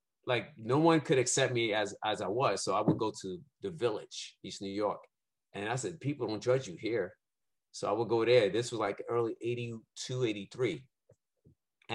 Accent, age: American, 30-49